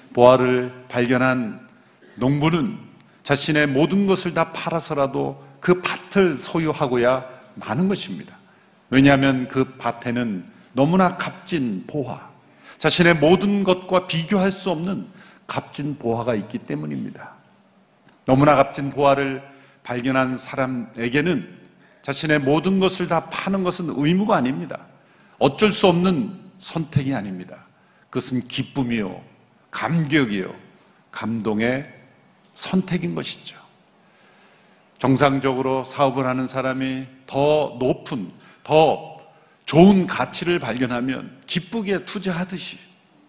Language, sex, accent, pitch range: Korean, male, native, 130-175 Hz